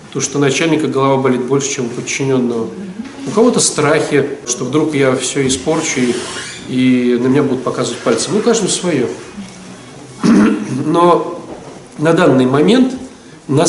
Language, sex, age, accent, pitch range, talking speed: Russian, male, 40-59, native, 140-195 Hz, 140 wpm